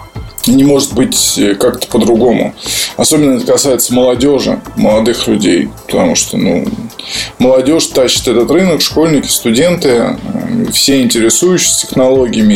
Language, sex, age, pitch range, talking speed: Russian, male, 20-39, 120-150 Hz, 110 wpm